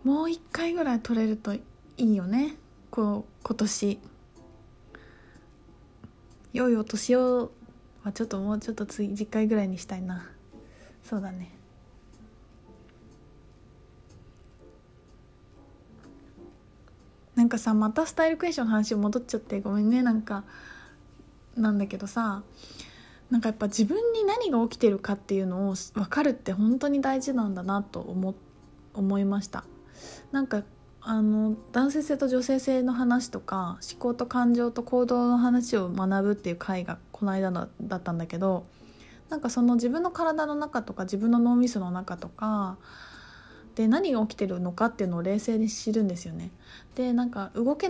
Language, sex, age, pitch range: Japanese, female, 20-39, 195-245 Hz